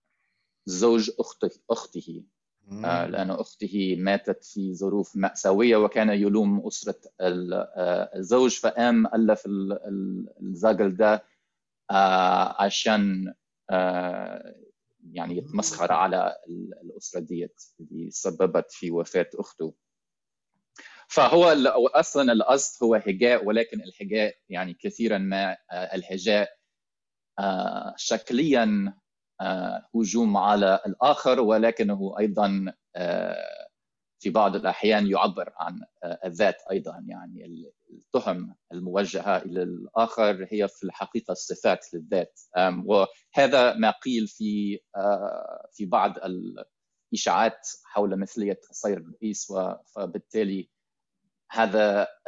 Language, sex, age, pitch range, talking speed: Arabic, male, 30-49, 95-115 Hz, 85 wpm